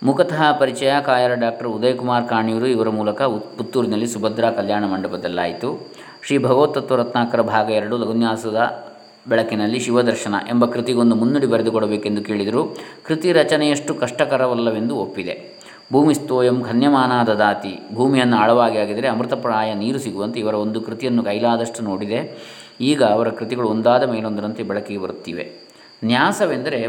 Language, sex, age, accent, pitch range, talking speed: Kannada, male, 20-39, native, 115-135 Hz, 115 wpm